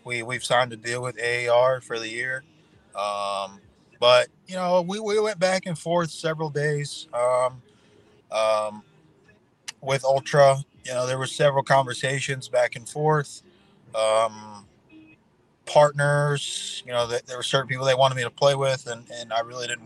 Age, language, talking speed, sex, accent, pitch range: 20-39, English, 165 wpm, male, American, 115-145 Hz